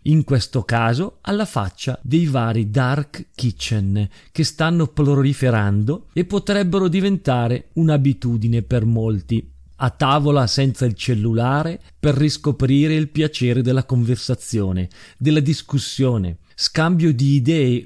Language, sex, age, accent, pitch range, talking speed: Italian, male, 40-59, native, 120-165 Hz, 115 wpm